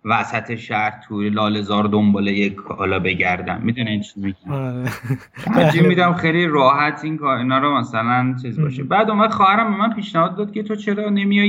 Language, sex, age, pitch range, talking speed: Persian, male, 30-49, 115-180 Hz, 165 wpm